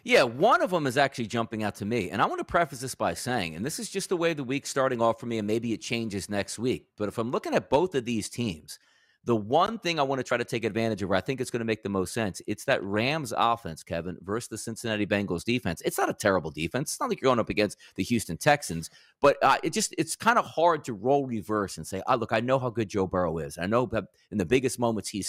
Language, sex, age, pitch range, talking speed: English, male, 30-49, 100-135 Hz, 285 wpm